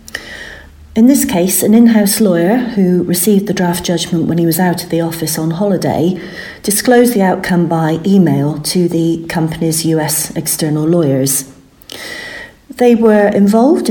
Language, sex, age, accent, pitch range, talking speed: English, female, 40-59, British, 155-185 Hz, 145 wpm